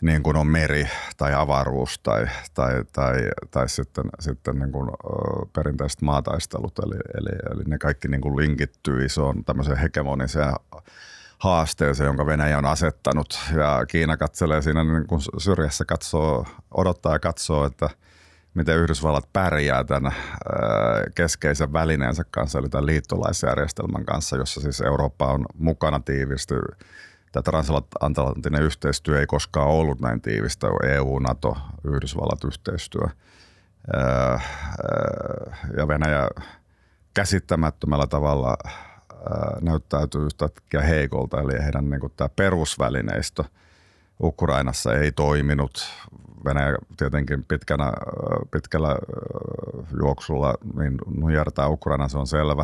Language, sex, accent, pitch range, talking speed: Finnish, male, native, 70-80 Hz, 115 wpm